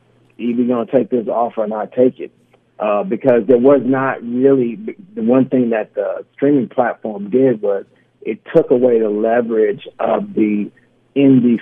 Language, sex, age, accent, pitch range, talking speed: English, male, 50-69, American, 115-140 Hz, 170 wpm